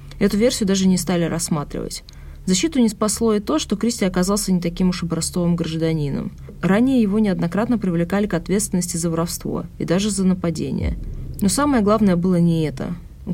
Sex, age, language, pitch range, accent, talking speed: female, 20-39, Russian, 150-200 Hz, native, 175 wpm